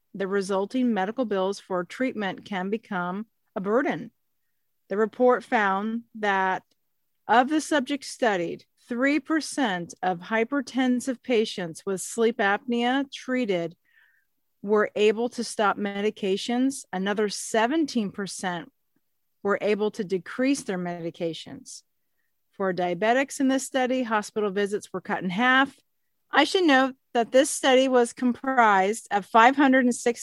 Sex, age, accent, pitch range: female, 40-59, American, 195-250 Hz